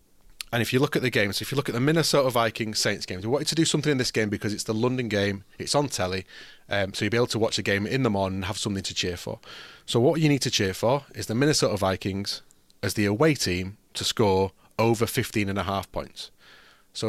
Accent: British